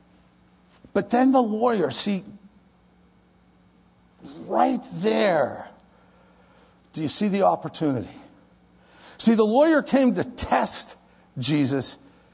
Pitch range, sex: 140-225 Hz, male